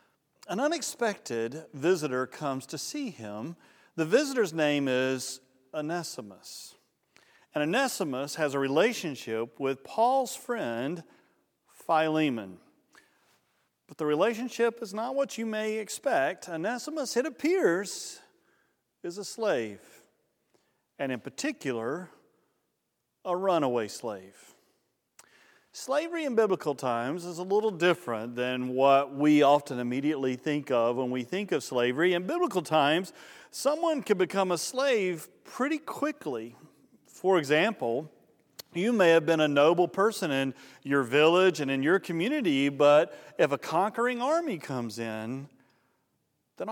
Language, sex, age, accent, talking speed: English, male, 40-59, American, 125 wpm